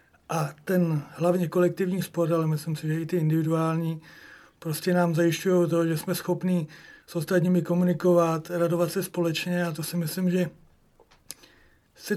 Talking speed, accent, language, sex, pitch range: 155 wpm, native, Czech, male, 165-180 Hz